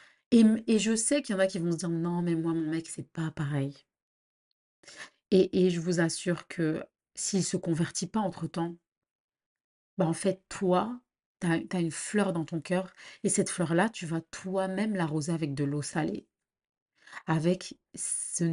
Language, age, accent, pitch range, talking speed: French, 30-49, French, 170-205 Hz, 185 wpm